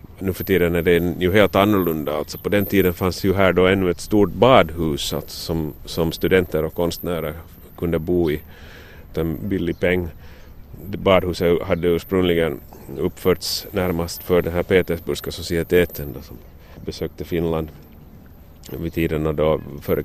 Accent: Finnish